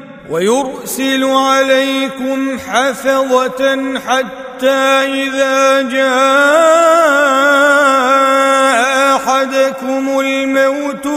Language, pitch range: Arabic, 220-280 Hz